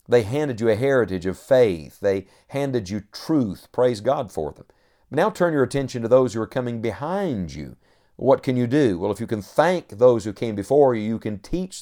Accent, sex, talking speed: American, male, 220 wpm